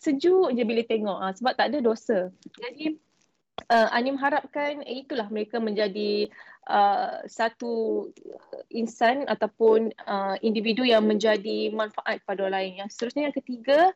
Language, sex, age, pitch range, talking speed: Malay, female, 20-39, 205-235 Hz, 140 wpm